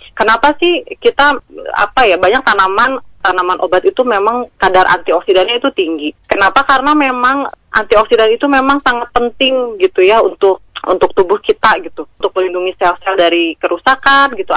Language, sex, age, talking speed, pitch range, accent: Indonesian, female, 30-49, 150 wpm, 185-260 Hz, native